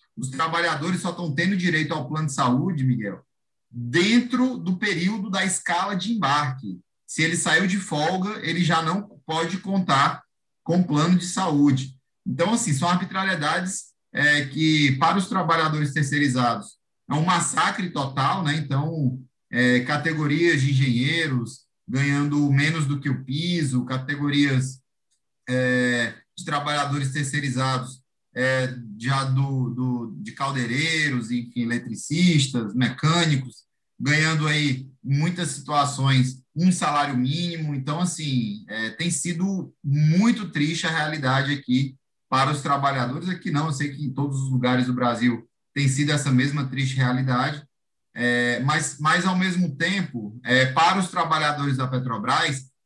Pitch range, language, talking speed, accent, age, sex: 130-165 Hz, Portuguese, 135 wpm, Brazilian, 30-49, male